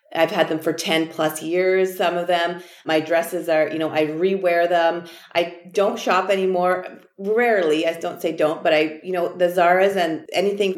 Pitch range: 165-200 Hz